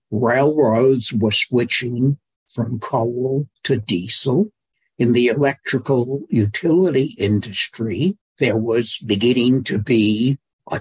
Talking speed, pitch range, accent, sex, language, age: 100 wpm, 115-140 Hz, American, male, English, 60-79